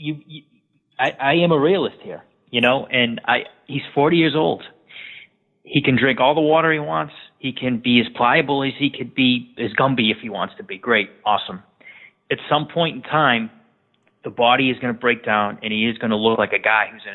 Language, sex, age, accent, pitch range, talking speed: English, male, 30-49, American, 115-155 Hz, 230 wpm